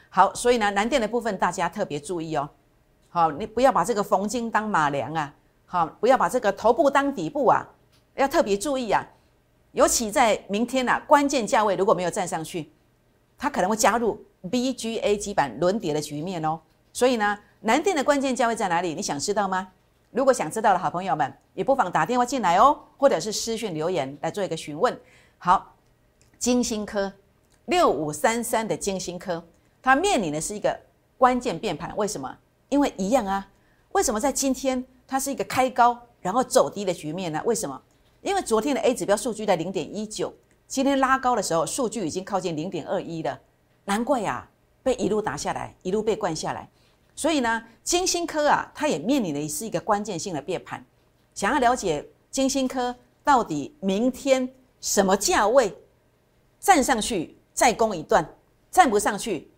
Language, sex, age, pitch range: Chinese, female, 50-69, 180-260 Hz